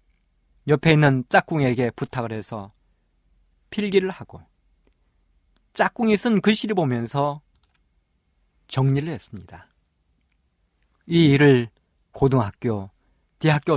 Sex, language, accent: male, Korean, native